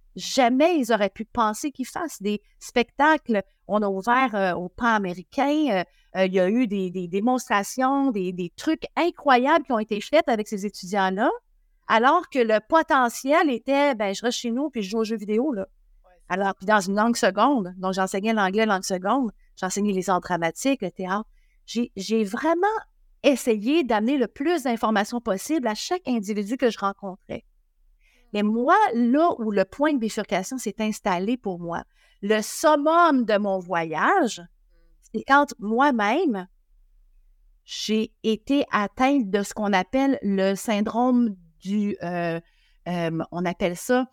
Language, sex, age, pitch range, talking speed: French, female, 50-69, 195-265 Hz, 160 wpm